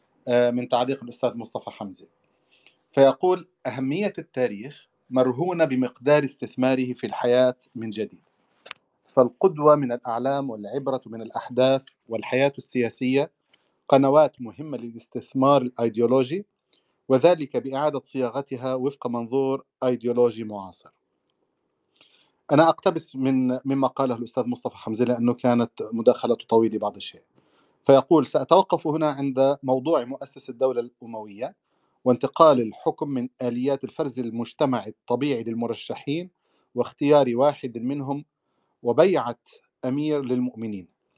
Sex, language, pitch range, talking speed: male, Arabic, 120-145 Hz, 100 wpm